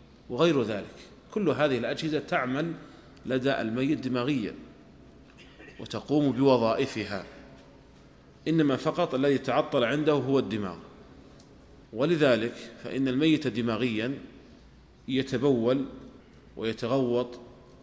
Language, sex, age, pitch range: Arabic, male, 40-59, 115-135 Hz